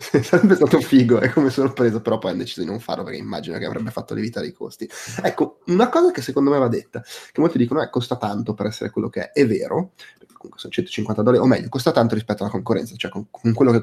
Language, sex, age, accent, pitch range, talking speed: Italian, male, 20-39, native, 110-130 Hz, 260 wpm